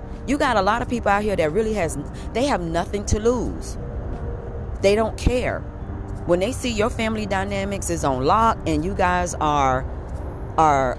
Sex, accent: female, American